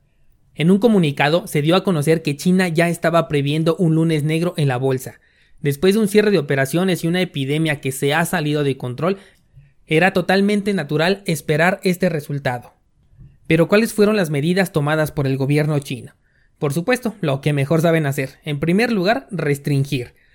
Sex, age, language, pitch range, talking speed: male, 30-49, Spanish, 145-185 Hz, 175 wpm